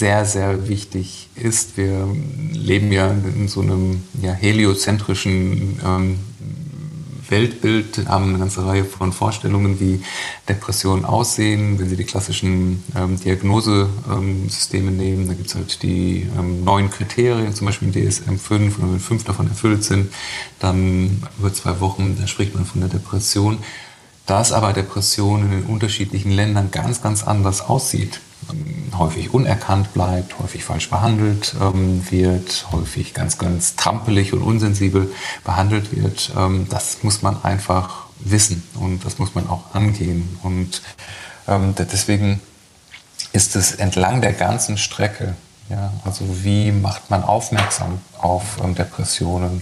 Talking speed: 140 wpm